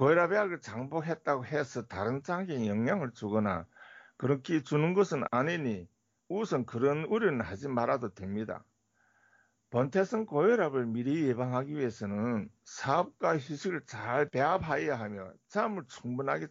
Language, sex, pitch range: Korean, male, 115-170 Hz